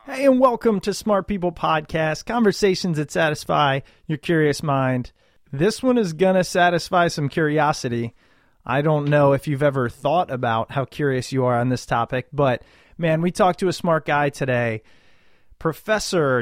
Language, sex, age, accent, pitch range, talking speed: English, male, 30-49, American, 135-180 Hz, 170 wpm